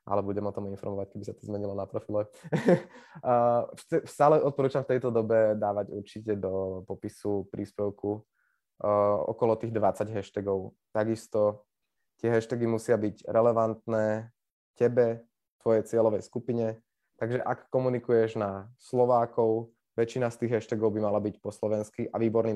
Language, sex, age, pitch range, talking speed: Slovak, male, 20-39, 105-120 Hz, 140 wpm